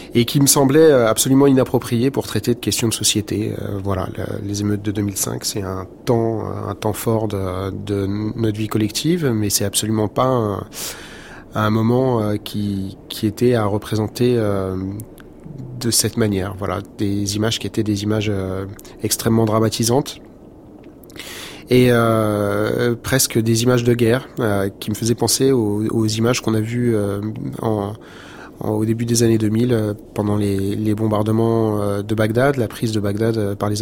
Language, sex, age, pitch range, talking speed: French, male, 30-49, 105-120 Hz, 165 wpm